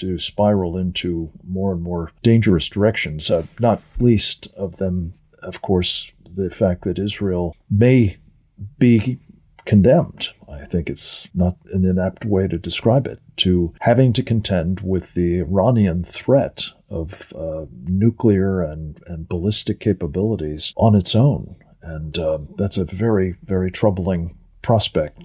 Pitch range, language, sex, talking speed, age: 85-105 Hz, English, male, 140 wpm, 50-69